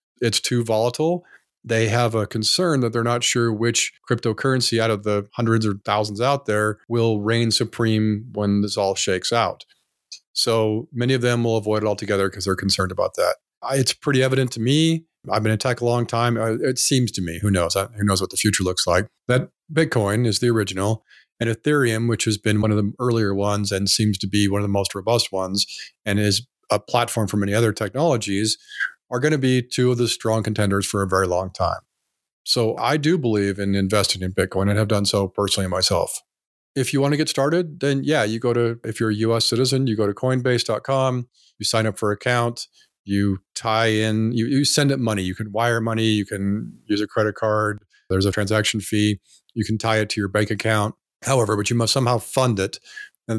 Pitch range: 105-120 Hz